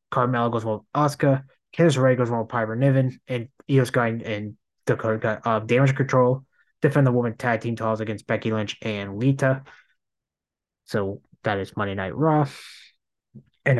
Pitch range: 115-135 Hz